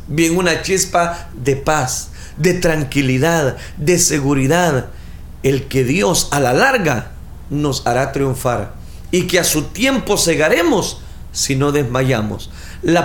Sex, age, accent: male, 40-59, Mexican